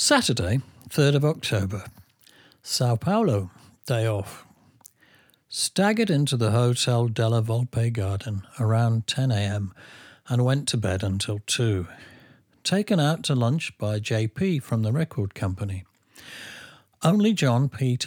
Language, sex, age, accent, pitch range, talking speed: English, male, 60-79, British, 110-140 Hz, 120 wpm